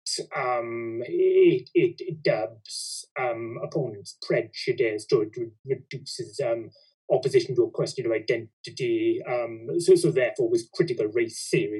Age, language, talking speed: 30-49, English, 130 wpm